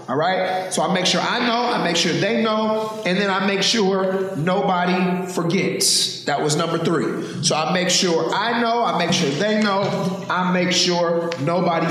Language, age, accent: English, 30-49, American